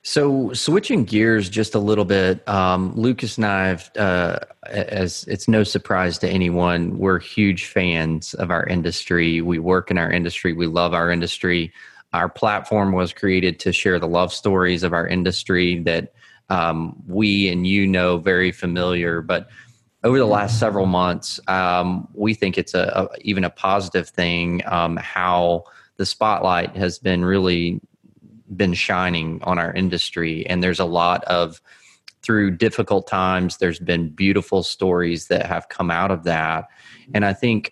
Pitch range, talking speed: 90-100 Hz, 165 wpm